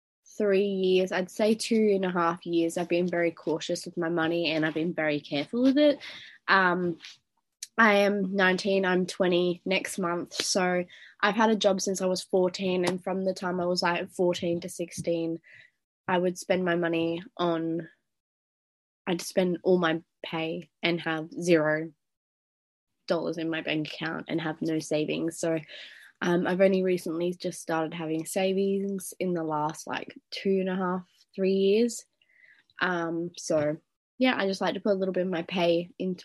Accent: Australian